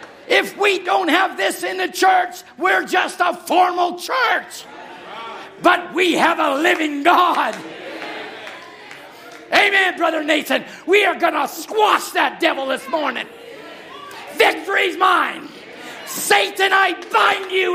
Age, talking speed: 50-69, 130 wpm